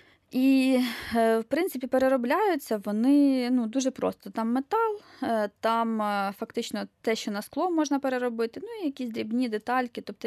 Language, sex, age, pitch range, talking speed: Ukrainian, female, 20-39, 195-255 Hz, 140 wpm